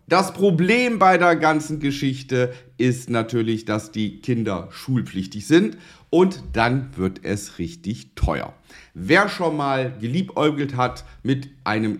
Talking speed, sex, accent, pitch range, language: 130 wpm, male, German, 110-160 Hz, German